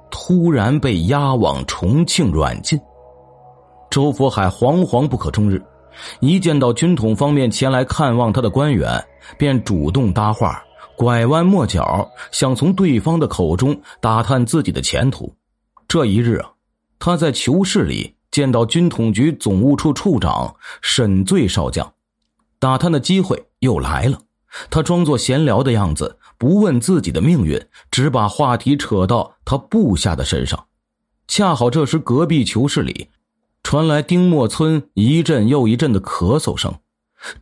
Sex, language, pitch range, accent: male, Chinese, 115-155 Hz, native